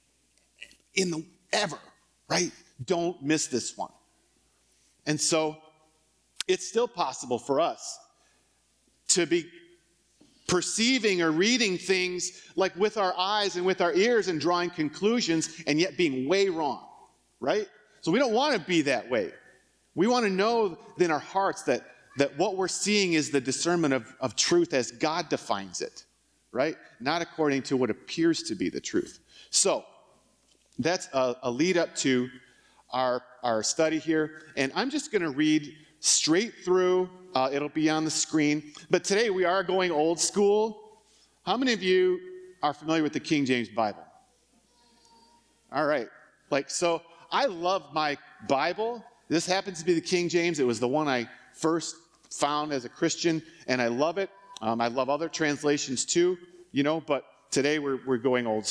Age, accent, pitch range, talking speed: 40-59, American, 145-190 Hz, 165 wpm